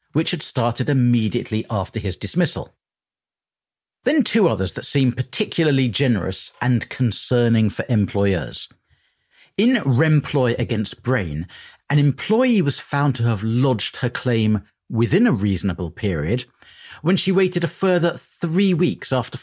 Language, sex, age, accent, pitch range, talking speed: English, male, 50-69, British, 110-160 Hz, 135 wpm